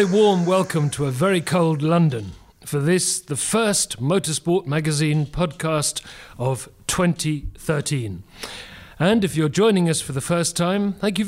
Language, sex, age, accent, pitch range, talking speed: English, male, 40-59, British, 135-175 Hz, 145 wpm